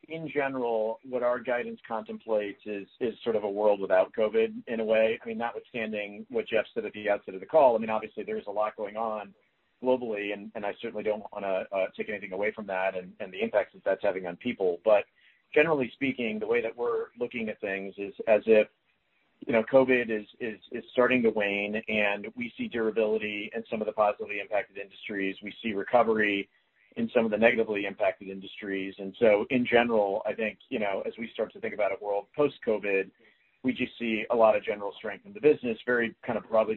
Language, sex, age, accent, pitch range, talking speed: English, male, 40-59, American, 105-125 Hz, 220 wpm